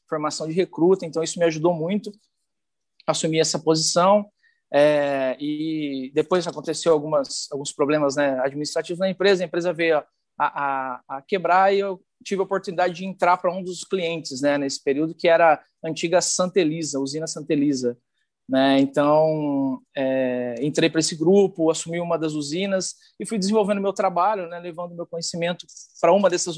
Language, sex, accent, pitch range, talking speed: Portuguese, male, Brazilian, 145-185 Hz, 170 wpm